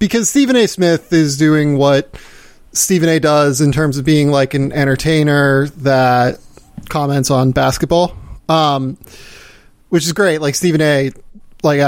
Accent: American